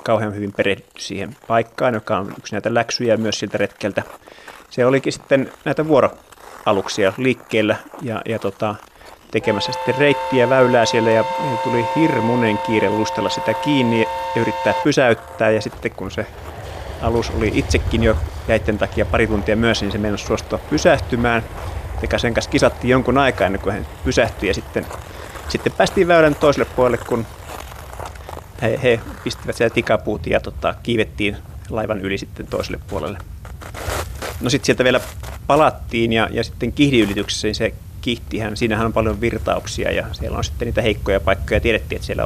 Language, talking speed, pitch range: Finnish, 160 wpm, 95-115 Hz